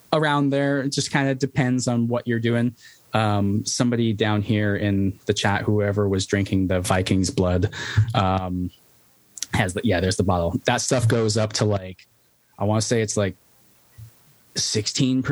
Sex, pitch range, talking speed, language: male, 100-125 Hz, 170 wpm, English